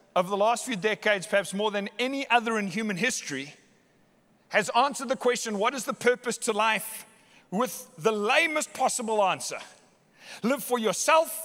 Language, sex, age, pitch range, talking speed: English, male, 40-59, 195-245 Hz, 160 wpm